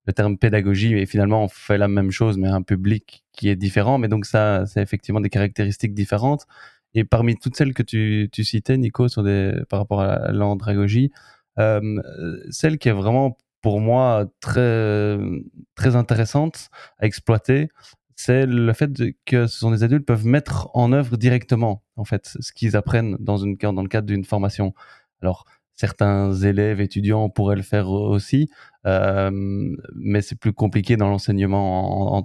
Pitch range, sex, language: 100-125 Hz, male, French